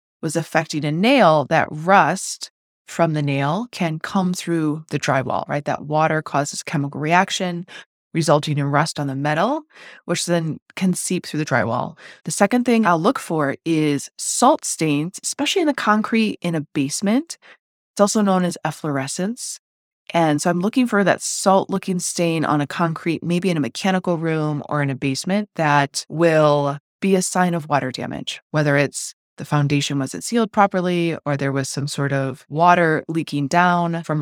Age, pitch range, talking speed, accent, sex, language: 20-39, 145-185 Hz, 175 wpm, American, female, English